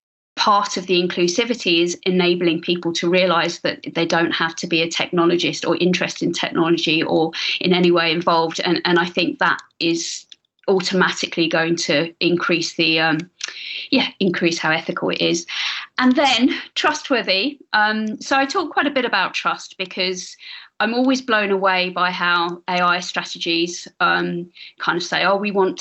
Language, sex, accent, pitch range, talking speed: English, female, British, 170-195 Hz, 165 wpm